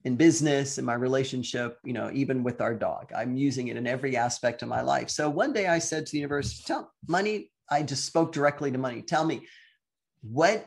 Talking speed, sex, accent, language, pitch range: 220 wpm, male, American, English, 130-165 Hz